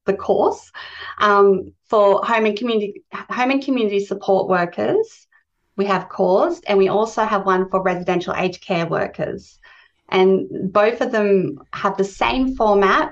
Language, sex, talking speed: English, female, 150 wpm